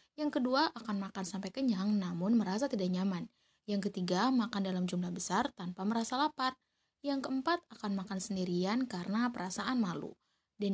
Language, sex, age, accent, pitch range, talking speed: Indonesian, female, 20-39, native, 190-230 Hz, 155 wpm